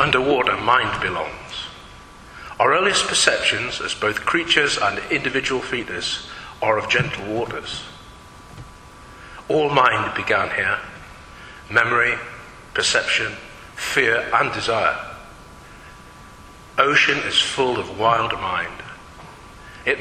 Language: English